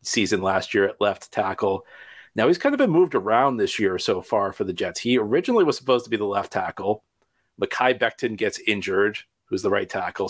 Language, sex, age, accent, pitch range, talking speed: English, male, 40-59, American, 105-135 Hz, 215 wpm